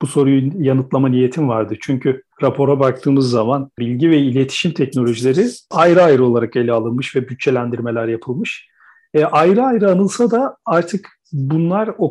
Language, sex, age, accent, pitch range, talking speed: Turkish, male, 40-59, native, 135-175 Hz, 145 wpm